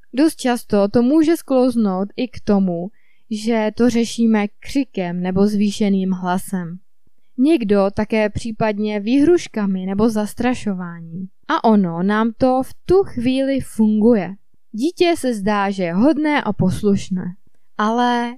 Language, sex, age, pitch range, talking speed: Czech, female, 20-39, 205-270 Hz, 125 wpm